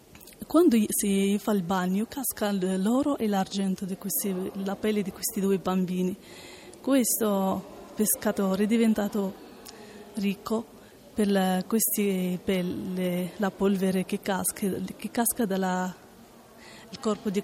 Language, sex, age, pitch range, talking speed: Italian, female, 30-49, 190-220 Hz, 115 wpm